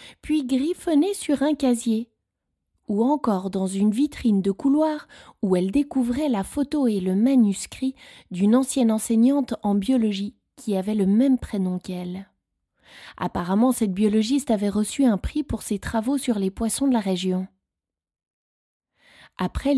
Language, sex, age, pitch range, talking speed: French, female, 20-39, 205-275 Hz, 145 wpm